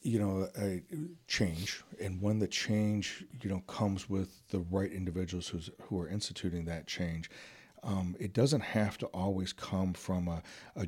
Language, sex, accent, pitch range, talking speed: English, male, American, 90-105 Hz, 165 wpm